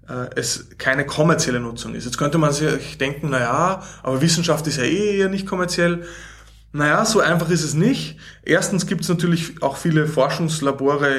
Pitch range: 140-170 Hz